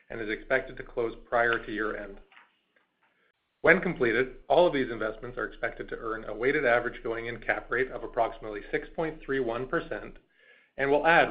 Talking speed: 160 wpm